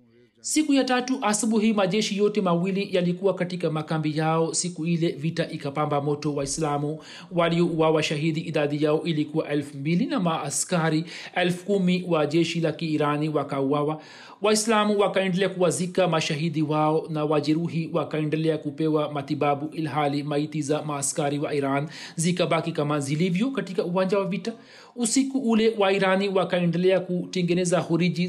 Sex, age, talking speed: male, 40-59, 135 wpm